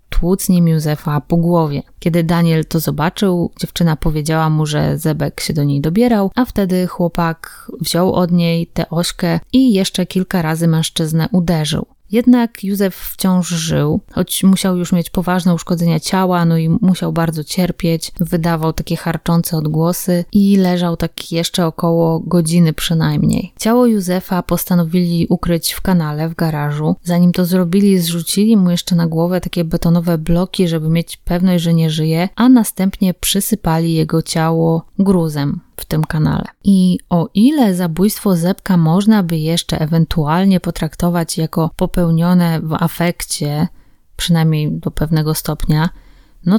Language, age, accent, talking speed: Polish, 20-39, native, 145 wpm